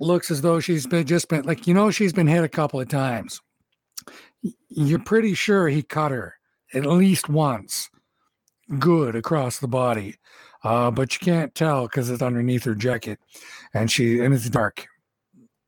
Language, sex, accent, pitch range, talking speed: English, male, American, 125-175 Hz, 170 wpm